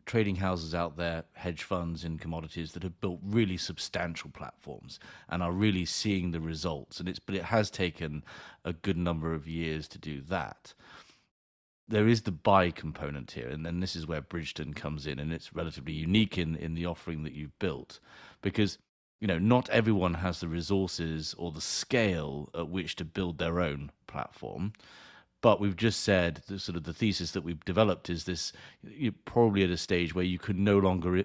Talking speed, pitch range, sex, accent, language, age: 195 wpm, 85-100 Hz, male, British, English, 30-49